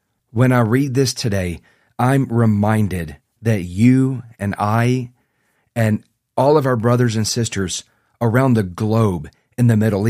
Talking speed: 145 wpm